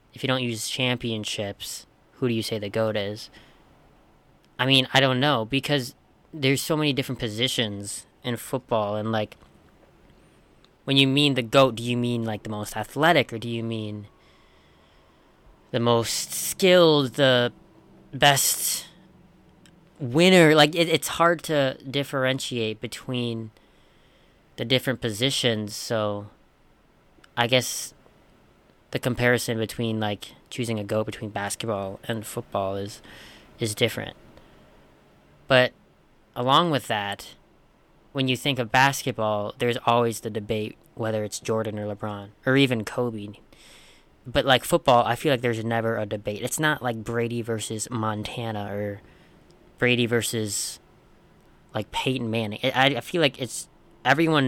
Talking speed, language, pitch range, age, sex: 135 wpm, English, 110-130 Hz, 20-39, female